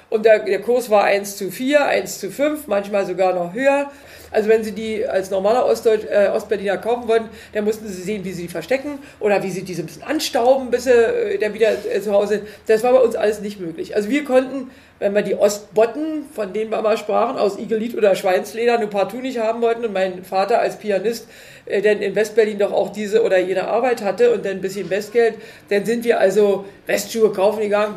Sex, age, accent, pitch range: female, 40-59, German, 195-240 Hz